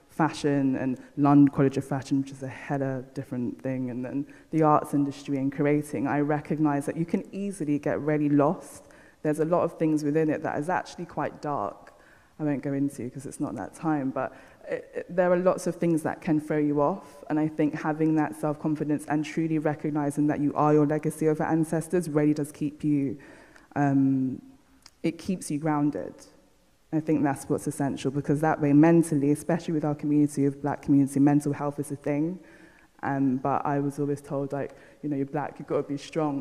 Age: 20-39